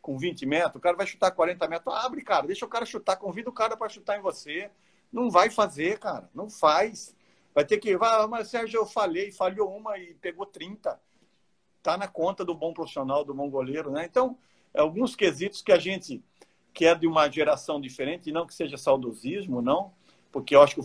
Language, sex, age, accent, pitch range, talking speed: Portuguese, male, 50-69, Brazilian, 140-195 Hz, 210 wpm